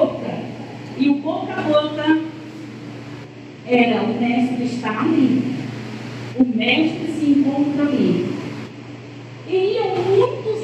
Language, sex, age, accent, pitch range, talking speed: Portuguese, female, 40-59, Brazilian, 245-360 Hz, 100 wpm